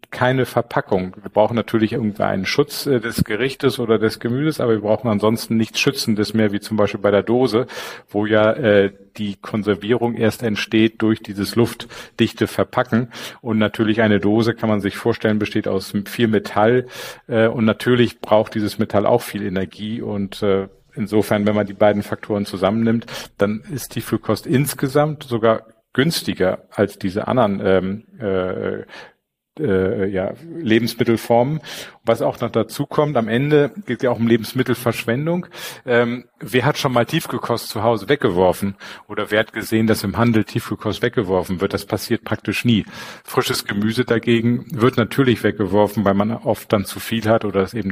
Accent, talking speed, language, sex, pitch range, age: German, 165 wpm, German, male, 105-120 Hz, 50-69